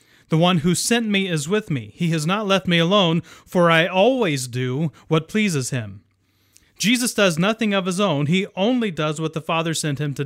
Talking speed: 210 wpm